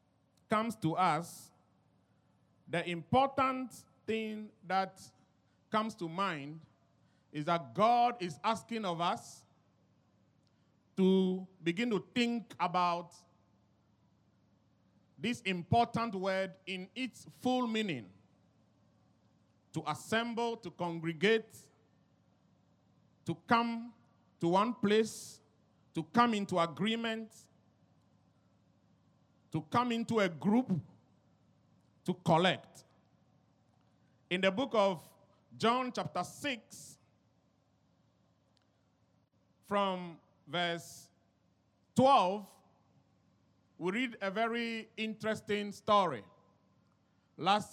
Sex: male